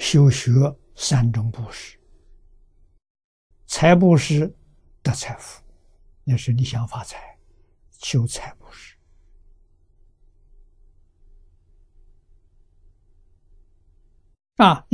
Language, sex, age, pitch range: Chinese, male, 60-79, 80-130 Hz